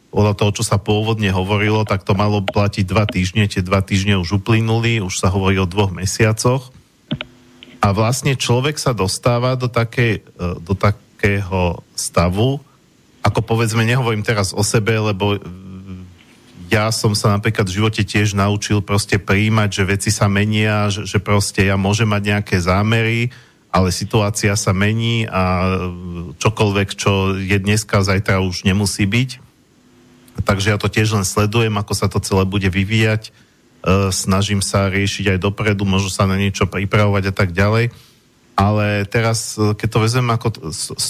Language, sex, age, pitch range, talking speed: Slovak, male, 50-69, 95-110 Hz, 155 wpm